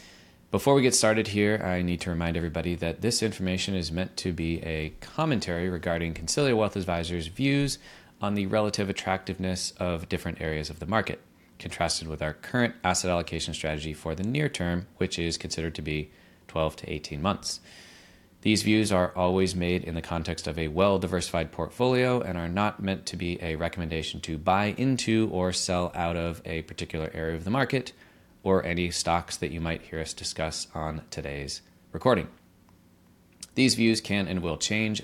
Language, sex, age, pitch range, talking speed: English, male, 30-49, 80-100 Hz, 180 wpm